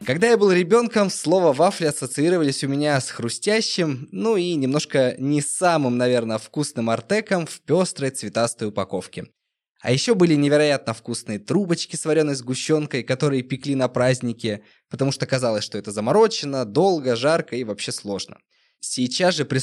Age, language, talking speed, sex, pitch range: 20-39, Russian, 155 wpm, male, 120-150 Hz